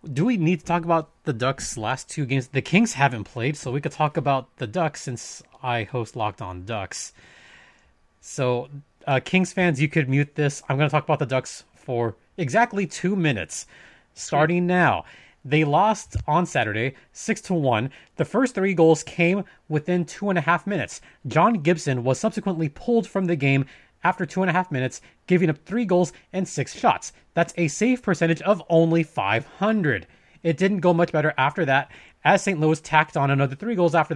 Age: 30-49